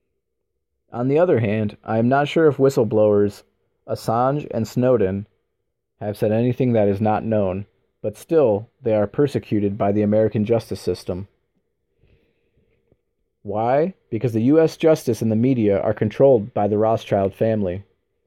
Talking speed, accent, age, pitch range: 145 wpm, American, 30-49, 100-130 Hz